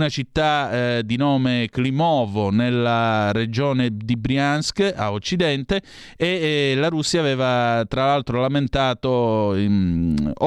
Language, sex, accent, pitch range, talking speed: Italian, male, native, 120-155 Hz, 120 wpm